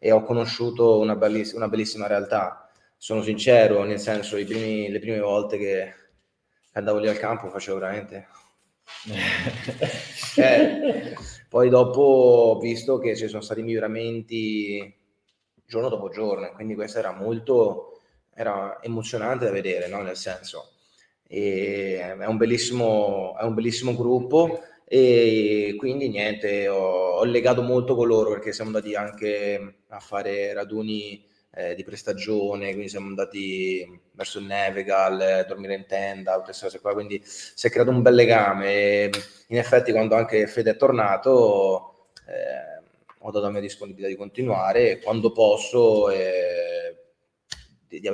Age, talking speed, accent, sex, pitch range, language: 20-39, 145 wpm, native, male, 100-120 Hz, Italian